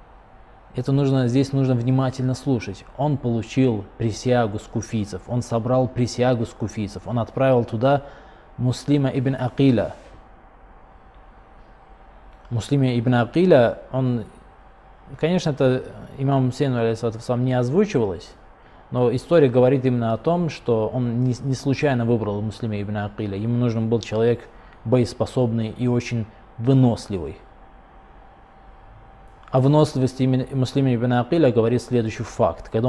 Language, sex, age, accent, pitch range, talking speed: Russian, male, 20-39, native, 110-130 Hz, 115 wpm